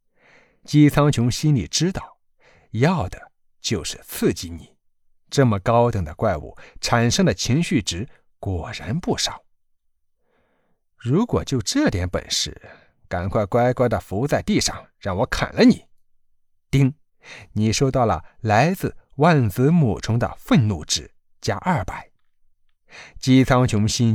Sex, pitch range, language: male, 95-140 Hz, Chinese